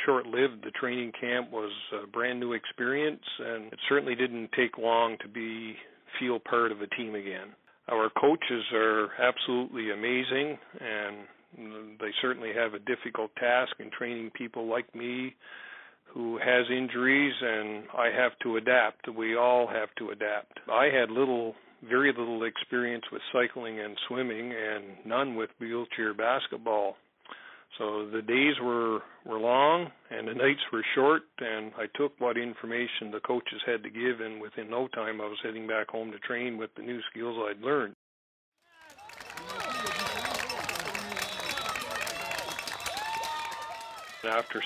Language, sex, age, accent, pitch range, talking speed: English, male, 50-69, American, 110-125 Hz, 140 wpm